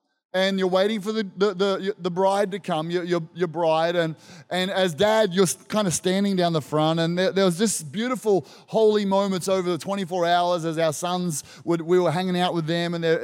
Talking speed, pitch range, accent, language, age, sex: 225 wpm, 170-195 Hz, Australian, English, 20-39, male